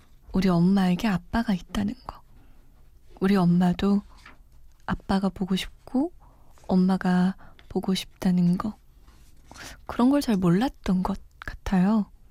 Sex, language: female, Korean